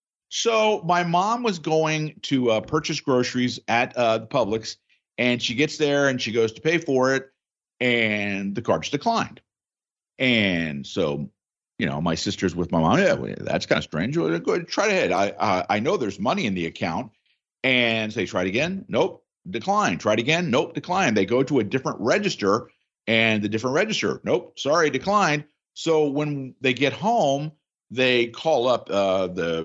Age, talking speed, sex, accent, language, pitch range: 50-69, 185 wpm, male, American, English, 100-140 Hz